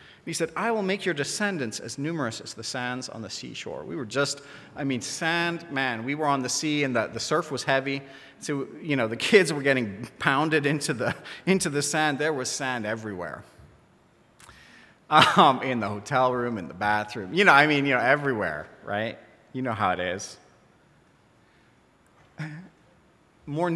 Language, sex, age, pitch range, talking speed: English, male, 40-59, 120-155 Hz, 180 wpm